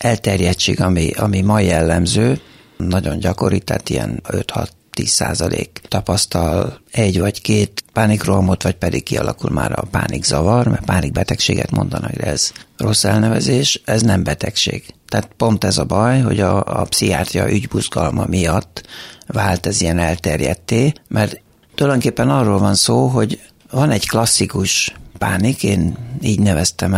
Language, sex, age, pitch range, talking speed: Hungarian, male, 60-79, 95-115 Hz, 135 wpm